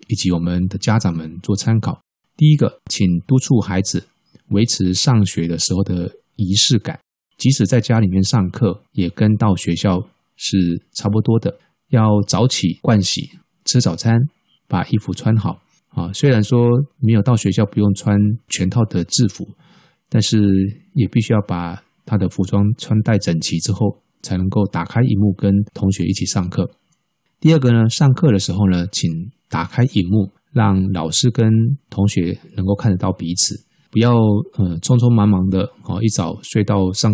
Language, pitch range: Chinese, 95-115 Hz